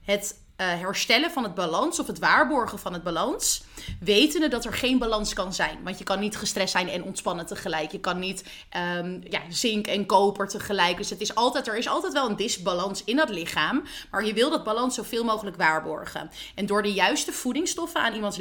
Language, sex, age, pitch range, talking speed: Dutch, female, 20-39, 190-260 Hz, 210 wpm